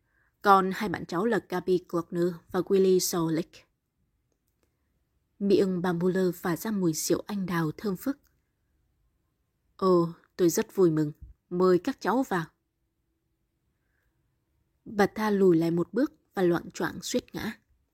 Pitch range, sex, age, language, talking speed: 170-210 Hz, female, 20-39, Vietnamese, 140 wpm